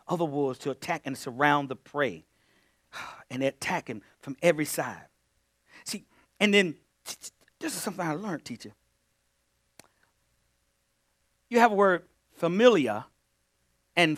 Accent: American